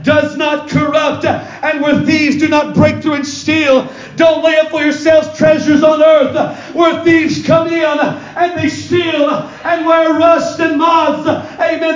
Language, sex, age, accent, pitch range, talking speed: English, male, 40-59, American, 310-345 Hz, 165 wpm